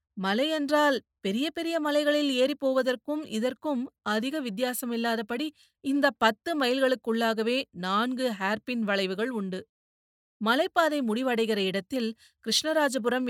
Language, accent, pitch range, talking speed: Tamil, native, 205-255 Hz, 85 wpm